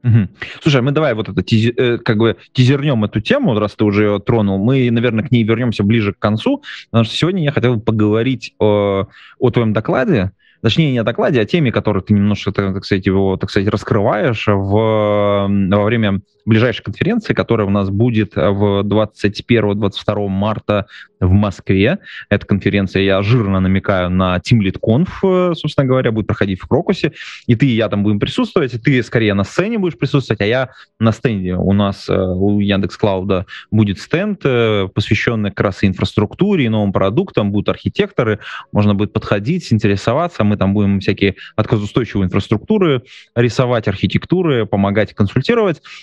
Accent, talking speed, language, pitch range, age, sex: native, 160 wpm, Russian, 105-130 Hz, 20-39, male